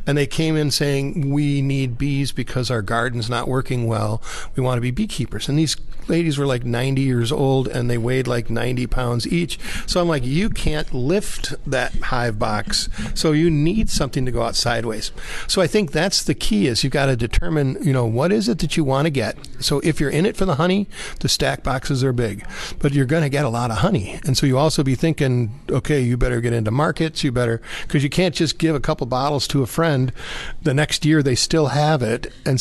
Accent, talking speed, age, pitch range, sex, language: American, 235 wpm, 50-69, 125-155 Hz, male, English